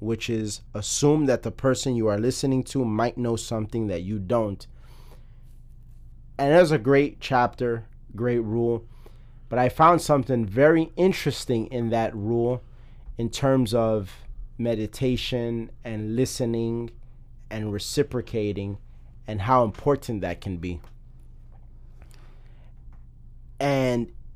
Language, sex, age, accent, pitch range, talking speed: English, male, 30-49, American, 105-125 Hz, 120 wpm